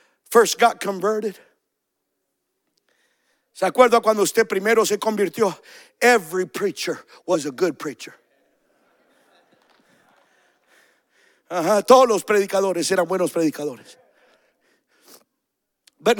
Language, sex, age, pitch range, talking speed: English, male, 50-69, 220-330 Hz, 90 wpm